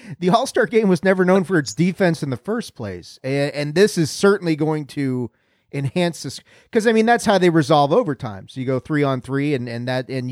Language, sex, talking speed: English, male, 235 wpm